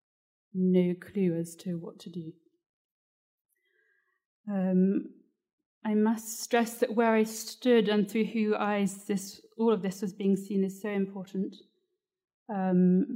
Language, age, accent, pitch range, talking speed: French, 30-49, British, 190-220 Hz, 135 wpm